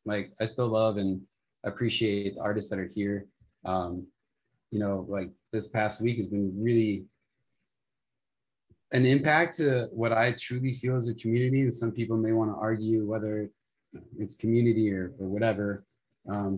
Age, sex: 30-49, male